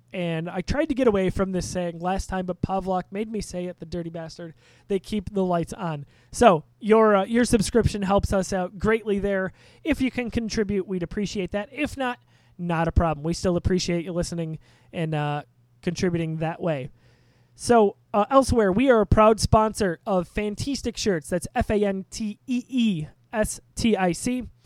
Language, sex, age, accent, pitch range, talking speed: English, male, 20-39, American, 170-215 Hz, 170 wpm